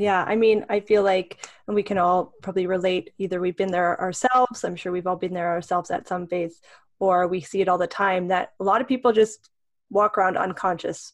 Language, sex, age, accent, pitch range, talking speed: English, female, 20-39, American, 185-215 Hz, 230 wpm